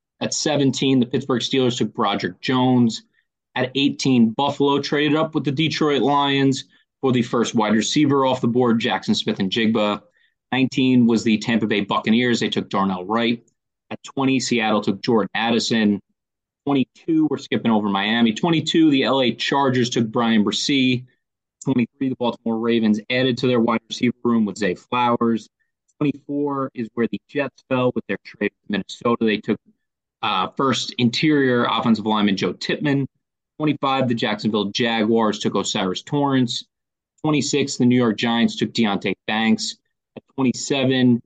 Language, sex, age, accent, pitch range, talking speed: English, male, 30-49, American, 115-135 Hz, 155 wpm